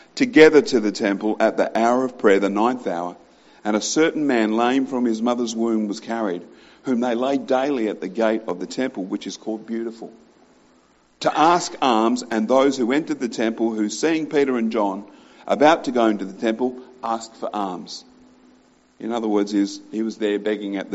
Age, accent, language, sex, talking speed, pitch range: 50-69, Australian, English, male, 190 wpm, 105-130 Hz